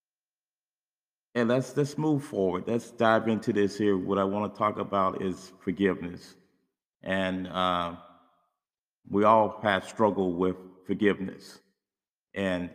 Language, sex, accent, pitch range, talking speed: English, male, American, 95-120 Hz, 120 wpm